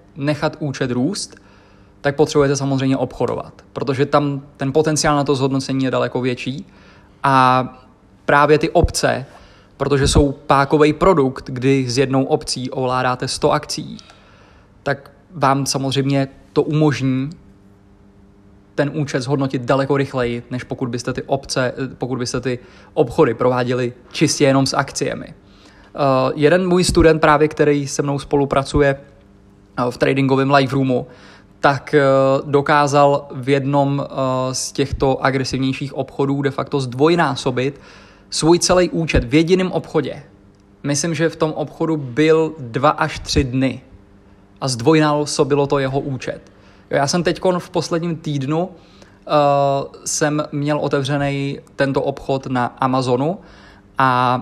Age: 20-39